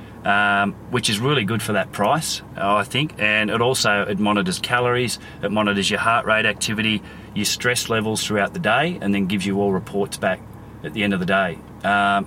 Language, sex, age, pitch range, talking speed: English, male, 30-49, 100-115 Hz, 205 wpm